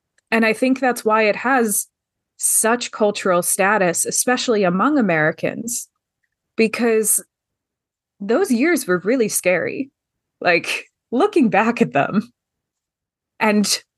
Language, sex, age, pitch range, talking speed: English, female, 20-39, 205-255 Hz, 105 wpm